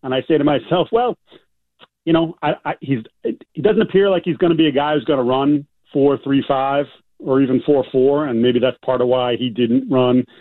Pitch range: 125-155 Hz